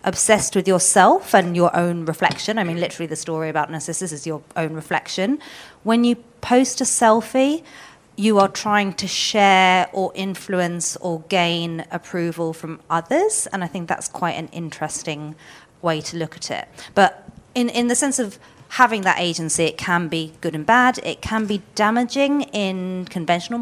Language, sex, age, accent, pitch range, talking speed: English, female, 30-49, British, 160-205 Hz, 175 wpm